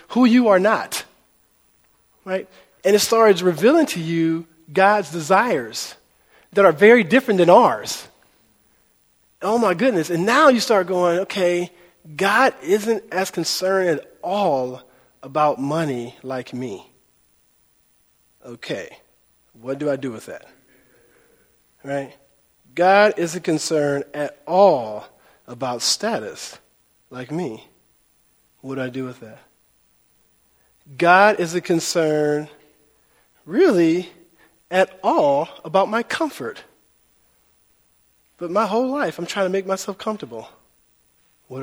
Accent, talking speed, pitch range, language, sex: American, 120 wpm, 135-215 Hz, English, male